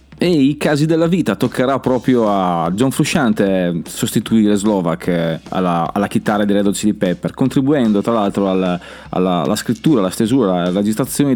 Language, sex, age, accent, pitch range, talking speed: Italian, male, 30-49, native, 95-130 Hz, 165 wpm